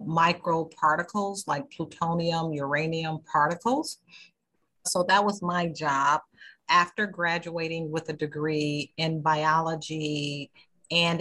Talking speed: 100 wpm